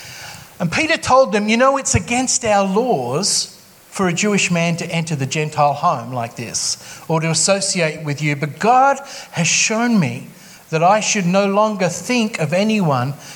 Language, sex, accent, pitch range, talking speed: English, male, Australian, 150-210 Hz, 175 wpm